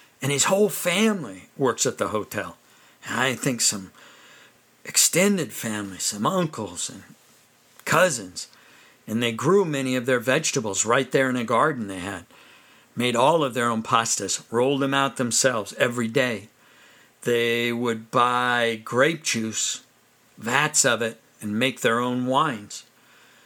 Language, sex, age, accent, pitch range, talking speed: English, male, 50-69, American, 115-135 Hz, 150 wpm